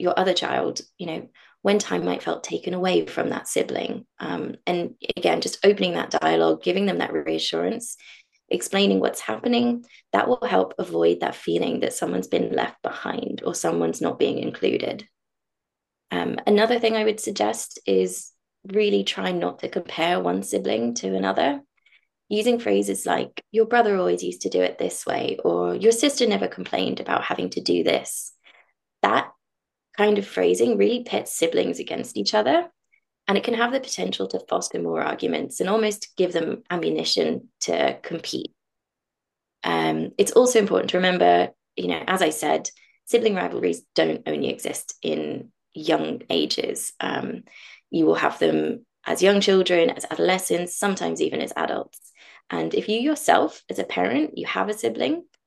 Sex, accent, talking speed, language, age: female, British, 165 wpm, English, 20-39